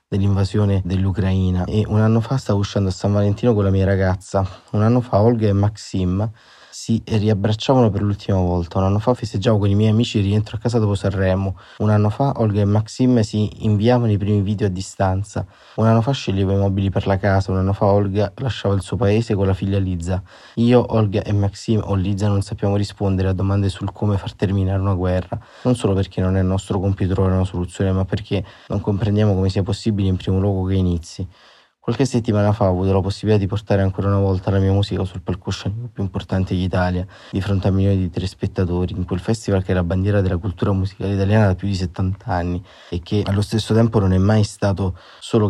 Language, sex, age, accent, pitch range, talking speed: Italian, male, 20-39, native, 95-105 Hz, 220 wpm